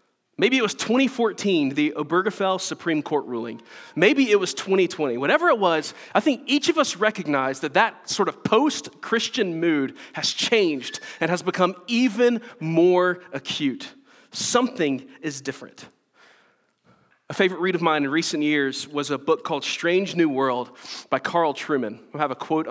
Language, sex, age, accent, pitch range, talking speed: English, male, 30-49, American, 150-225 Hz, 160 wpm